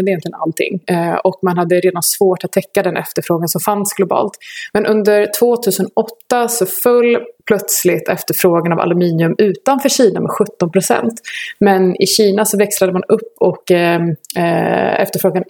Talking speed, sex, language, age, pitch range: 155 wpm, female, Swedish, 20-39, 175-205 Hz